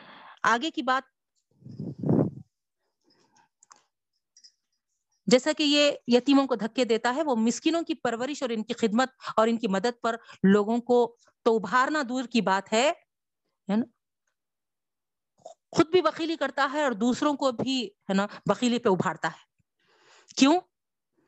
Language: Urdu